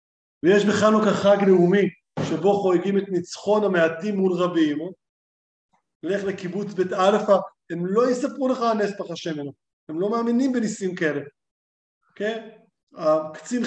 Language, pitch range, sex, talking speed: Hebrew, 165-205 Hz, male, 135 wpm